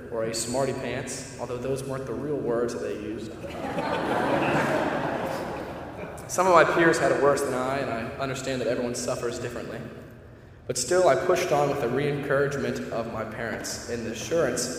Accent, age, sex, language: American, 10-29, male, English